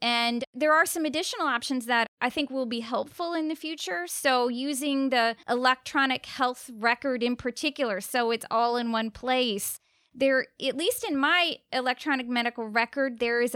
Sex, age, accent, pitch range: female, 30-49, American, 240-285 Hz